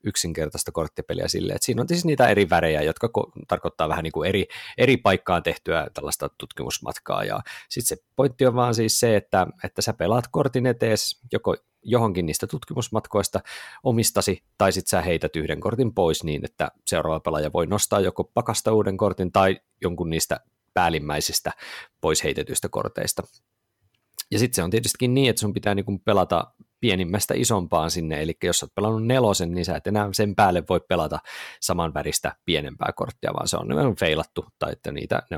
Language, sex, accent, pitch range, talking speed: Finnish, male, native, 85-110 Hz, 180 wpm